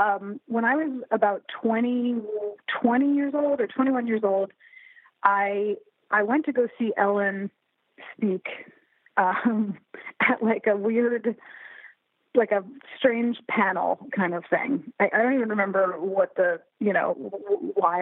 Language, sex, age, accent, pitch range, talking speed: English, female, 30-49, American, 195-255 Hz, 145 wpm